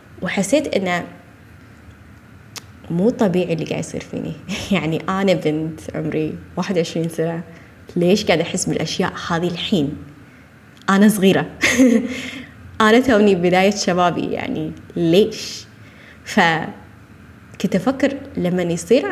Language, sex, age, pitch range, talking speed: Arabic, female, 20-39, 155-195 Hz, 100 wpm